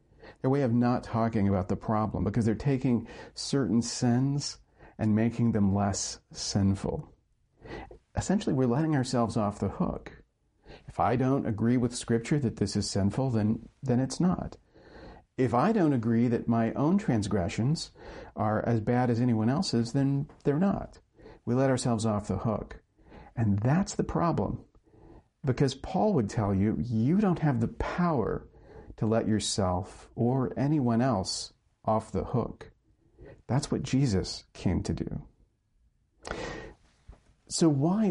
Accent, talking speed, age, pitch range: American, 145 wpm, 50-69, 110-135 Hz